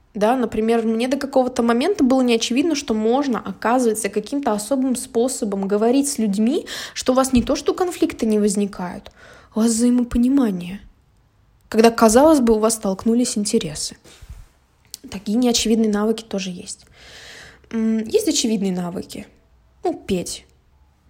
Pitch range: 215-270 Hz